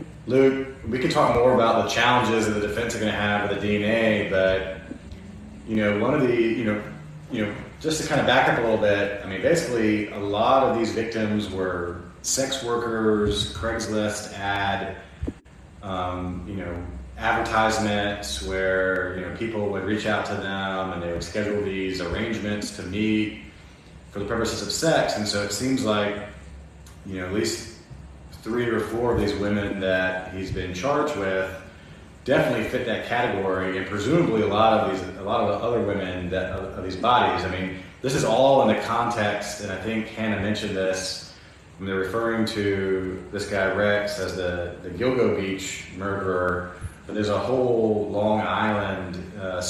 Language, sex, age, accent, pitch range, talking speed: English, male, 30-49, American, 95-110 Hz, 185 wpm